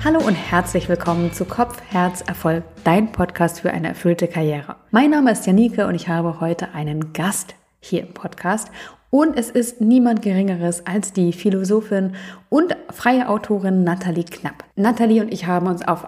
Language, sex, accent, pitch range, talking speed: German, female, German, 165-215 Hz, 170 wpm